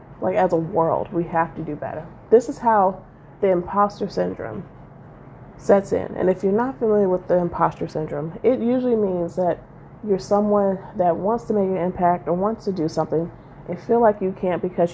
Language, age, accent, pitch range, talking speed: English, 30-49, American, 175-215 Hz, 195 wpm